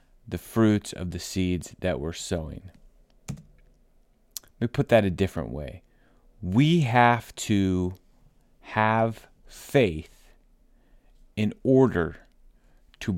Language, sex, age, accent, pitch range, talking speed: English, male, 30-49, American, 85-110 Hz, 105 wpm